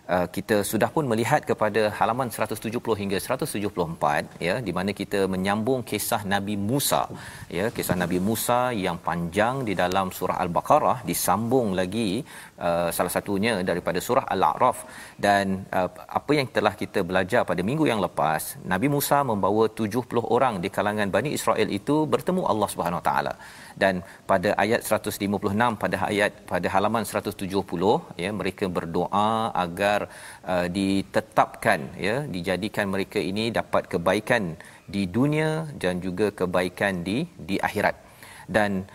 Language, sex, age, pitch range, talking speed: Malayalam, male, 40-59, 95-115 Hz, 135 wpm